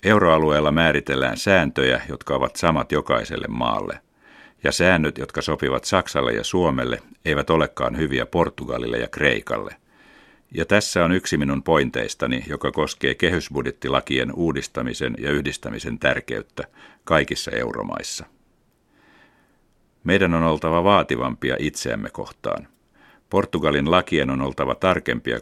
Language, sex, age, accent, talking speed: Finnish, male, 60-79, native, 110 wpm